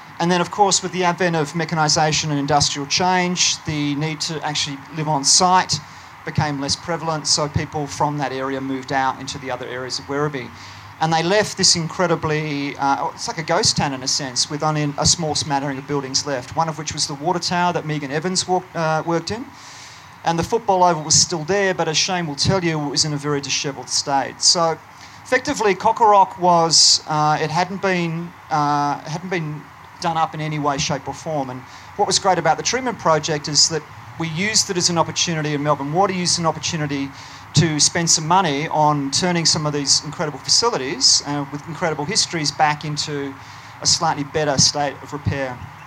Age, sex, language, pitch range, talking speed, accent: 30-49, male, English, 140-170 Hz, 200 wpm, Australian